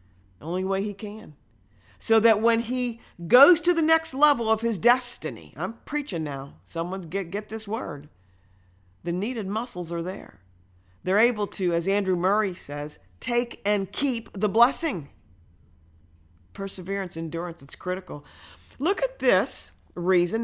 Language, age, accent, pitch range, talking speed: English, 50-69, American, 165-265 Hz, 145 wpm